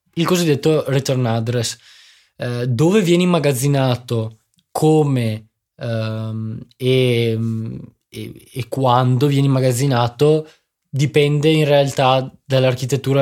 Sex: male